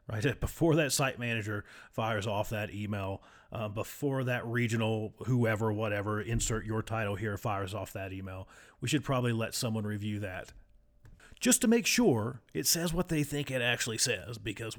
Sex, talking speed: male, 175 wpm